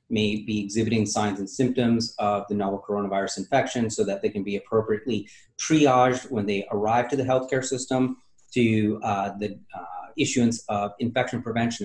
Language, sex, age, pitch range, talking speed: English, male, 30-49, 105-125 Hz, 165 wpm